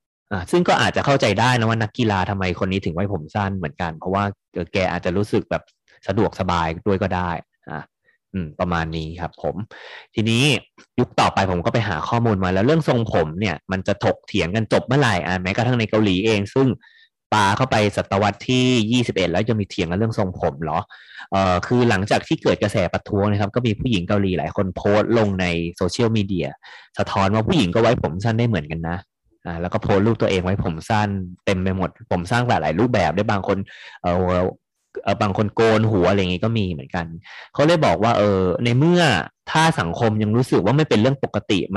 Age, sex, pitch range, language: 20-39, male, 90-115 Hz, Thai